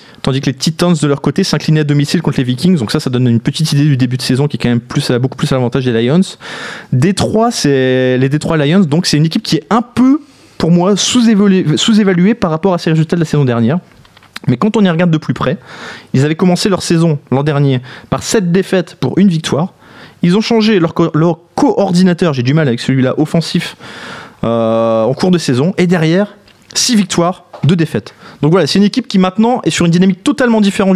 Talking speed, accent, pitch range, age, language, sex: 235 wpm, French, 135-180 Hz, 20-39, French, male